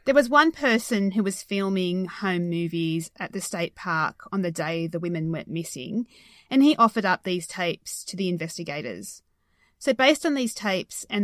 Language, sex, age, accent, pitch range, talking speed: English, female, 30-49, Australian, 180-230 Hz, 185 wpm